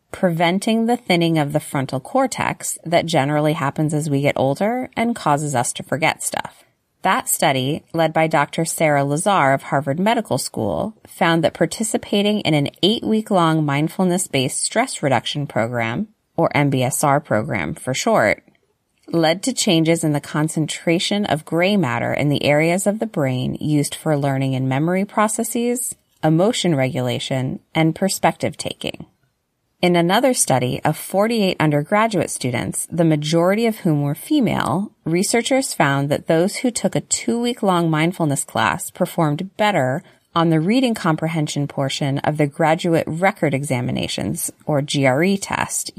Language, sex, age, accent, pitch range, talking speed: English, female, 30-49, American, 145-195 Hz, 145 wpm